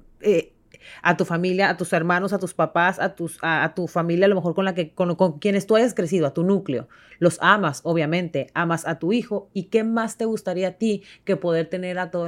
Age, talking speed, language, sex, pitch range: 30-49, 245 wpm, Spanish, female, 155-195 Hz